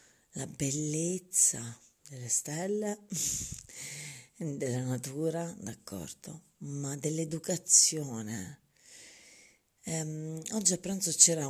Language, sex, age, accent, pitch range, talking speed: Italian, female, 40-59, native, 135-165 Hz, 70 wpm